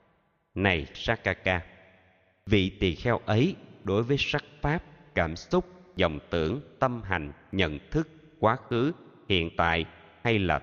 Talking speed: 135 wpm